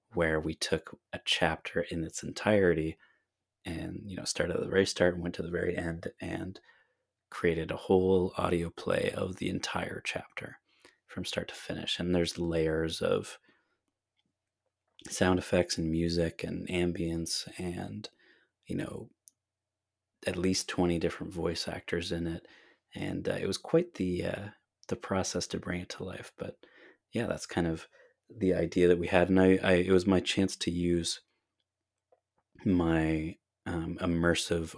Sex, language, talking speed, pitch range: male, English, 160 wpm, 85-95 Hz